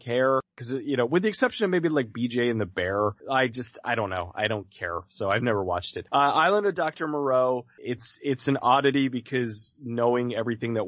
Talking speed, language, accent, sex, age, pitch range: 220 wpm, English, American, male, 30-49, 105-135 Hz